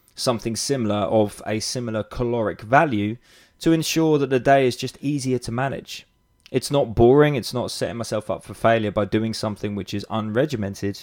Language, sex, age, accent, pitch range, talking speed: English, male, 20-39, British, 105-135 Hz, 180 wpm